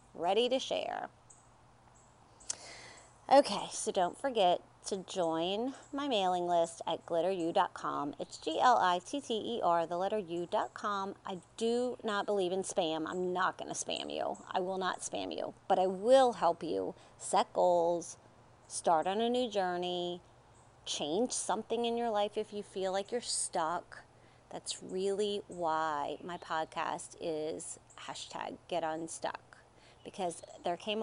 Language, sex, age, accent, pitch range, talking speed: English, female, 30-49, American, 175-225 Hz, 135 wpm